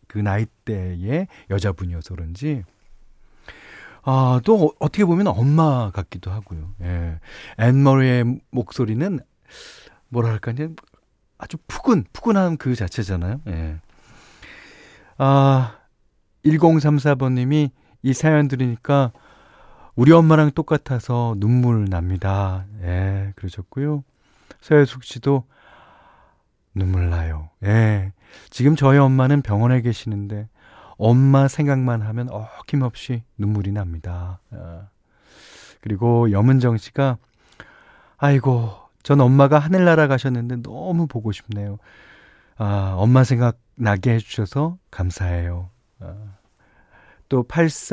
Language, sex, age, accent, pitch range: Korean, male, 40-59, native, 100-140 Hz